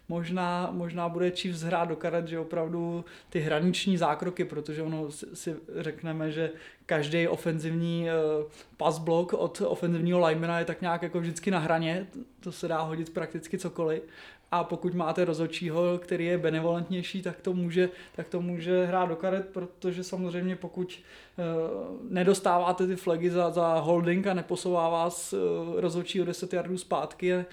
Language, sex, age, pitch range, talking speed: English, male, 20-39, 165-180 Hz, 155 wpm